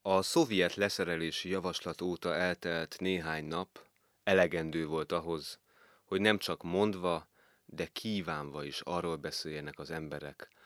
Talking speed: 125 wpm